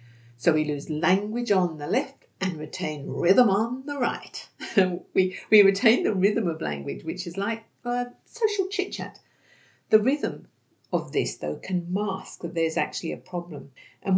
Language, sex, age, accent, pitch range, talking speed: English, female, 50-69, British, 165-250 Hz, 170 wpm